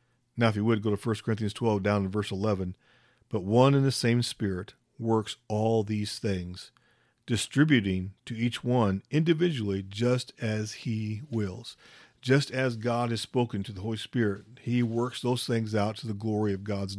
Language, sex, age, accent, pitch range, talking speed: English, male, 40-59, American, 105-125 Hz, 180 wpm